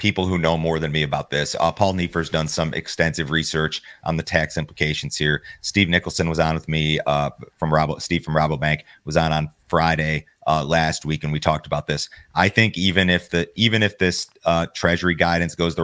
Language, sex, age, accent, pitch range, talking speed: English, male, 30-49, American, 80-90 Hz, 220 wpm